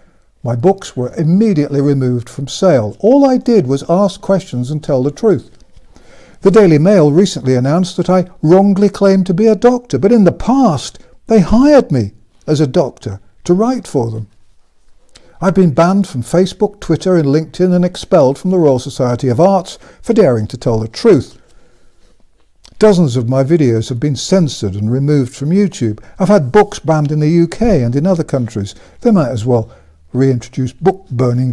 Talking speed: 180 wpm